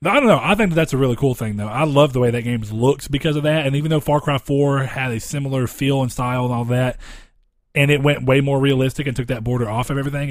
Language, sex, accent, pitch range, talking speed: English, male, American, 120-145 Hz, 285 wpm